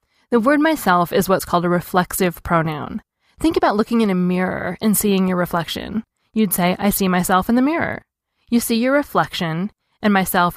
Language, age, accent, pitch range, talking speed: English, 20-39, American, 175-225 Hz, 185 wpm